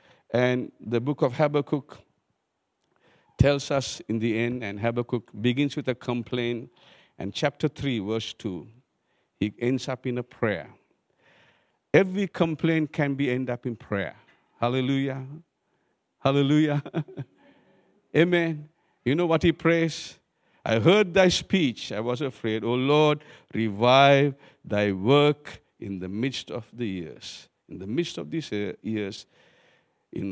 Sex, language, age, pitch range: male, English, 50-69, 120-160 Hz